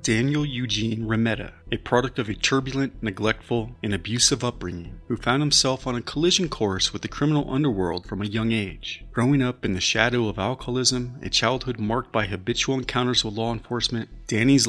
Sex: male